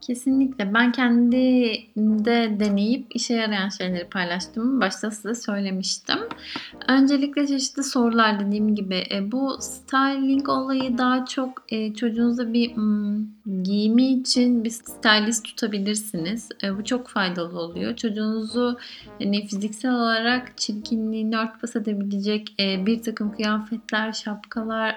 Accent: native